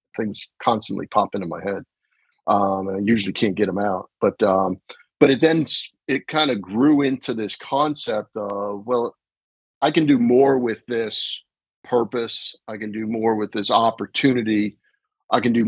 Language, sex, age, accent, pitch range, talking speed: English, male, 50-69, American, 100-125 Hz, 170 wpm